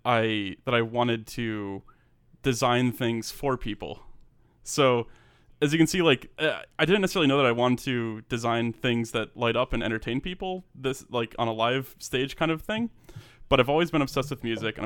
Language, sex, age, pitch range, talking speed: English, male, 20-39, 110-125 Hz, 195 wpm